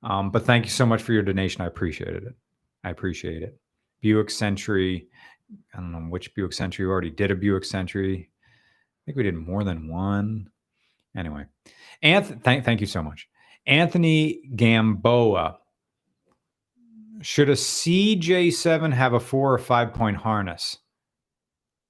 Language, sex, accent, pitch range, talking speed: English, male, American, 100-135 Hz, 150 wpm